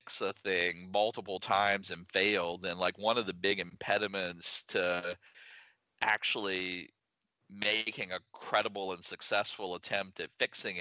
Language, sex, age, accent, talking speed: English, male, 40-59, American, 130 wpm